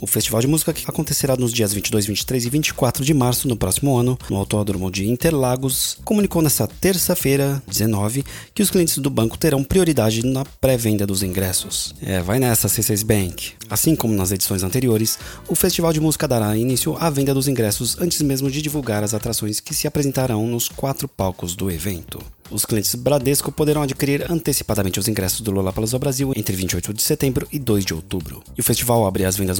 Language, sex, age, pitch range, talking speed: Portuguese, male, 20-39, 100-140 Hz, 195 wpm